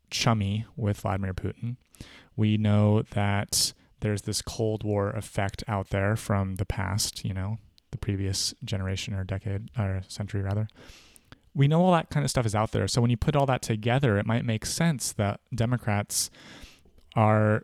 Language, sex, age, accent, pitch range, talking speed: English, male, 30-49, American, 100-115 Hz, 175 wpm